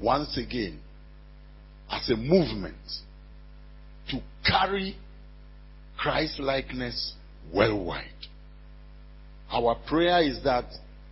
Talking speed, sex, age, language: 80 wpm, male, 60-79, English